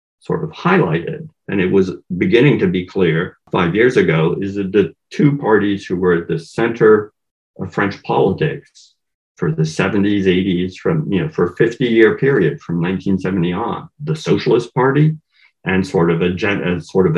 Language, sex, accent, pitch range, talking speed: English, male, American, 90-115 Hz, 175 wpm